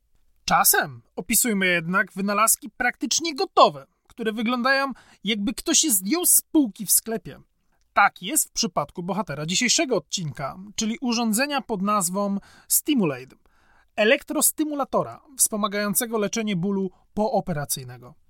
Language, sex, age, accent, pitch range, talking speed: Polish, male, 30-49, native, 180-255 Hz, 110 wpm